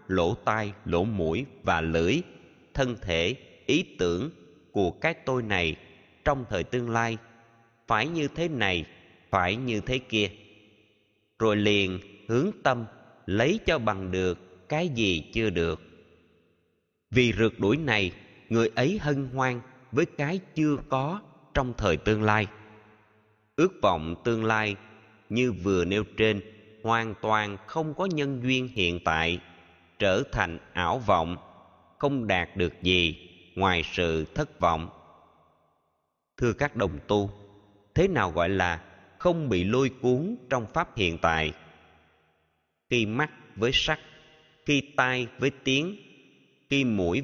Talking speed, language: 135 wpm, Vietnamese